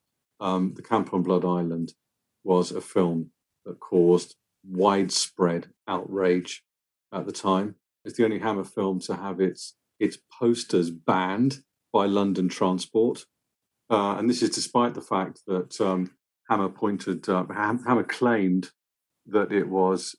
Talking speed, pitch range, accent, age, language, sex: 135 wpm, 90-100 Hz, British, 40-59, English, male